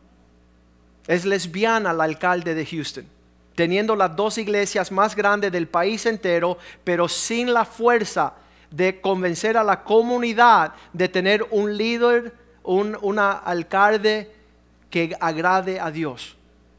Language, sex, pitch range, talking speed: Spanish, male, 175-215 Hz, 120 wpm